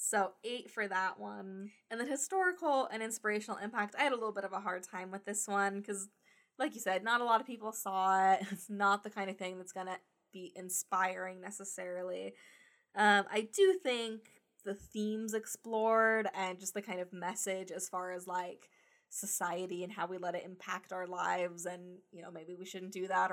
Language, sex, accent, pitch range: English, female, American, 185-220 Hz